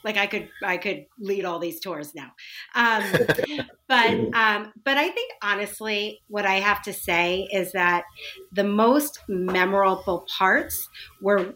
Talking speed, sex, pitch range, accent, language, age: 150 wpm, female, 190-215 Hz, American, English, 30-49